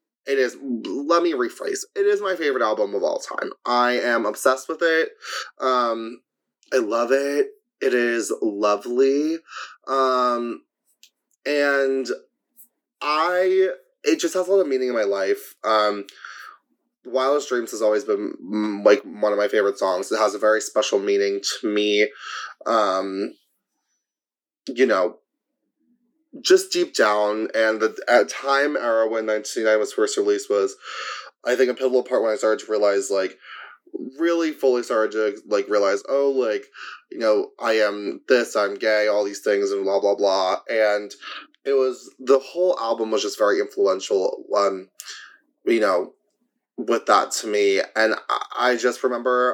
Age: 20-39